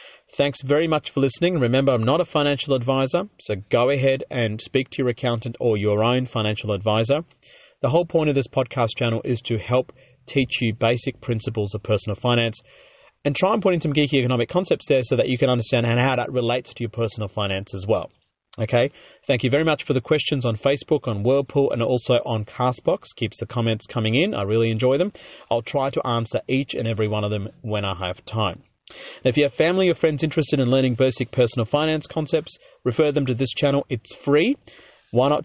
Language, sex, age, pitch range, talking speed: English, male, 30-49, 115-140 Hz, 215 wpm